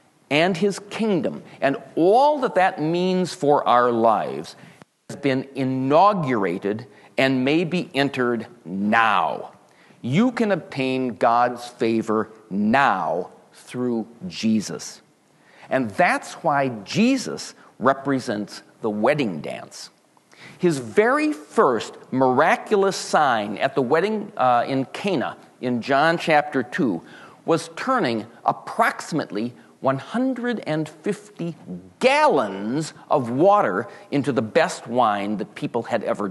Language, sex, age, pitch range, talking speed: English, male, 40-59, 125-200 Hz, 105 wpm